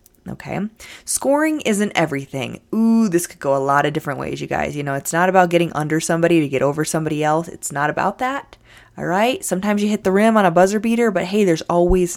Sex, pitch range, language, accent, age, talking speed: female, 150-200 Hz, English, American, 20-39, 230 wpm